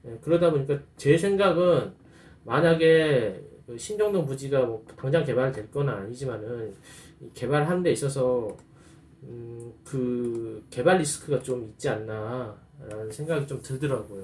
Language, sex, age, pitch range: Korean, male, 20-39, 115-155 Hz